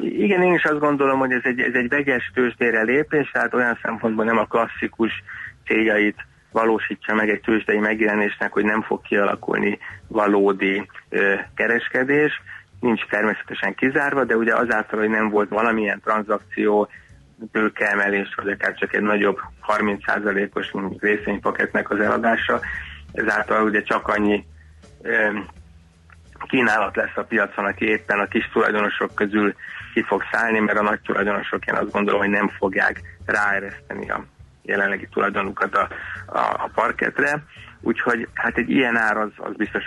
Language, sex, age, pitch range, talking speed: Hungarian, male, 30-49, 100-110 Hz, 145 wpm